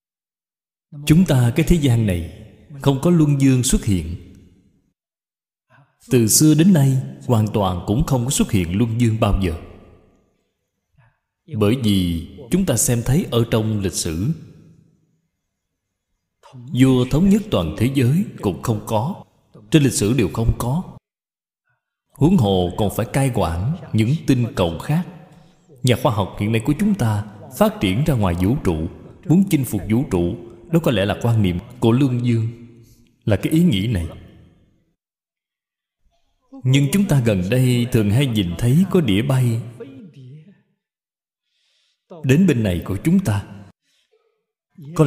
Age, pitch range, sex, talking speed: 20-39, 105-155 Hz, male, 150 wpm